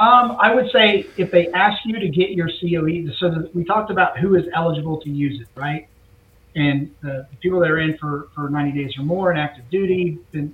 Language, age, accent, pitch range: English, 40-59, American, 140-175 Hz